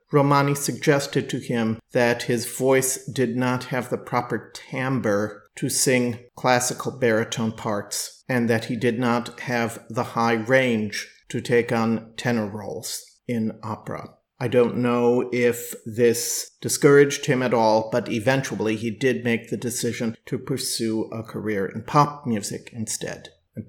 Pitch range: 115-125 Hz